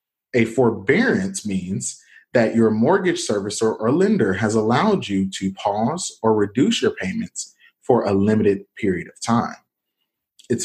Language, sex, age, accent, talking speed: English, male, 40-59, American, 140 wpm